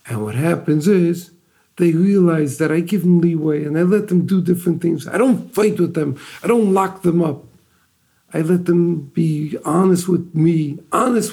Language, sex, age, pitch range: English, male, 50-69, 135-180 Hz